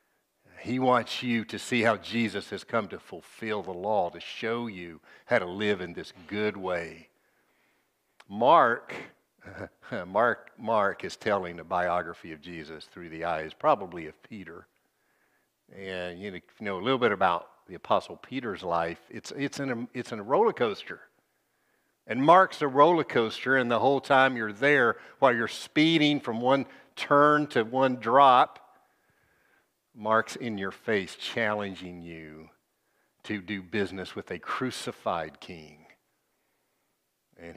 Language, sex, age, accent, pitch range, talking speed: English, male, 60-79, American, 90-125 Hz, 150 wpm